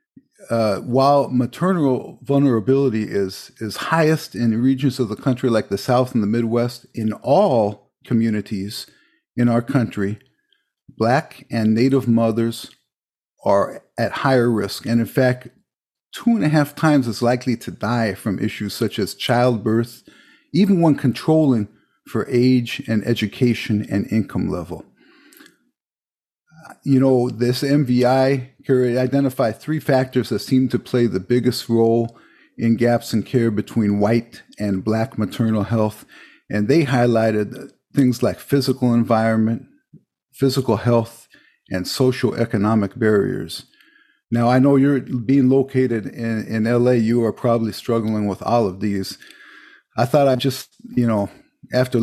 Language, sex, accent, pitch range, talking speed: English, male, American, 110-130 Hz, 140 wpm